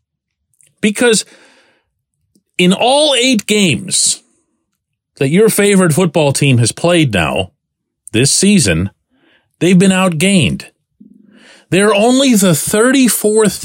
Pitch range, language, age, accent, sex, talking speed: 125-200 Hz, English, 40-59, American, male, 95 wpm